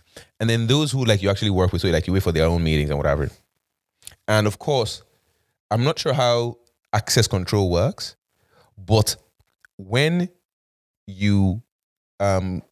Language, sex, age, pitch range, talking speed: English, male, 20-39, 90-115 Hz, 155 wpm